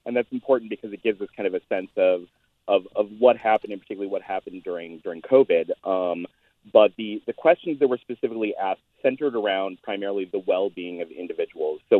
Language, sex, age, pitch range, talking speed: English, male, 30-49, 100-140 Hz, 200 wpm